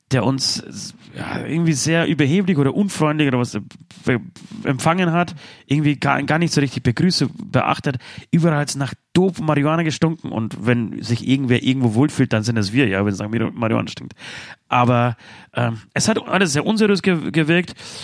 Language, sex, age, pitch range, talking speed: German, male, 30-49, 120-165 Hz, 170 wpm